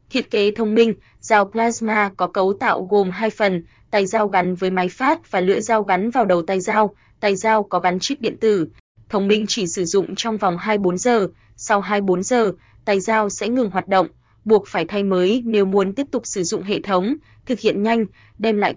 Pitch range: 190-225 Hz